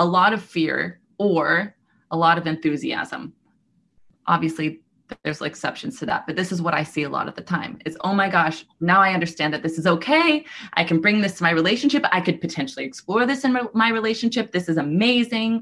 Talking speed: 210 wpm